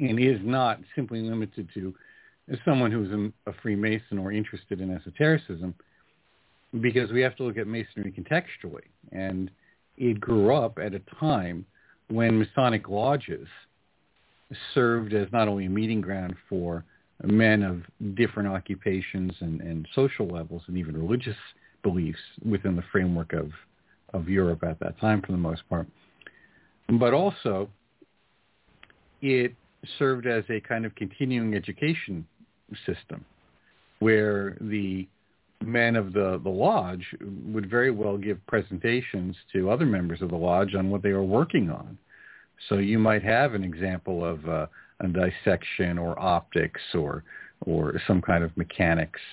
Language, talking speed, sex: English, 145 wpm, male